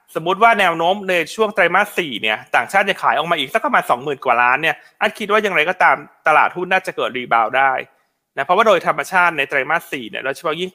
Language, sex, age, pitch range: Thai, male, 20-39, 150-205 Hz